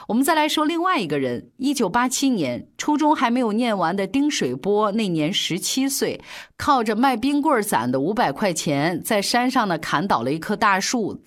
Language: Chinese